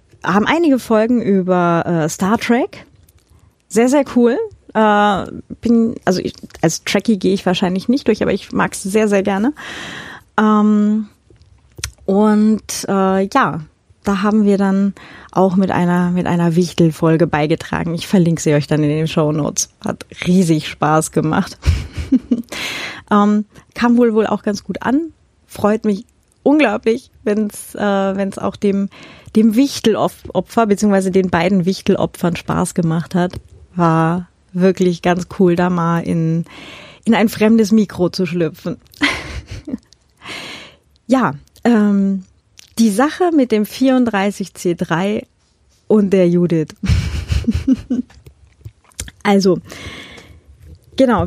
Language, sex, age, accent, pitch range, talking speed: German, female, 30-49, German, 175-225 Hz, 125 wpm